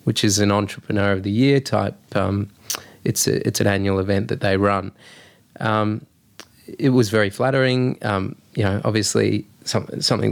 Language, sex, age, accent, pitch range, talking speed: English, male, 20-39, Australian, 105-120 Hz, 170 wpm